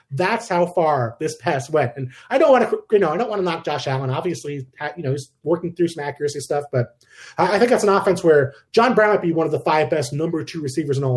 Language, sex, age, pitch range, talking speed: English, male, 30-49, 135-195 Hz, 270 wpm